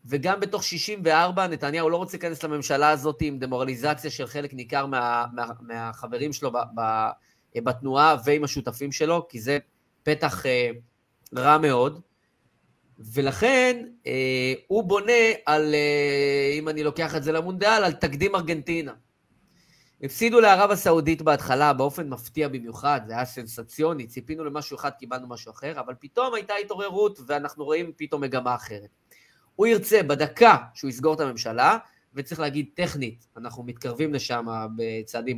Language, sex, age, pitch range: Hebrew, male, 30-49, 120-155 Hz